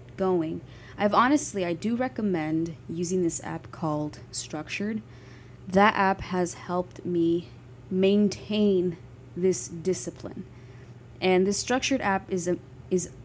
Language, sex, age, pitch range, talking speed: English, female, 20-39, 150-180 Hz, 120 wpm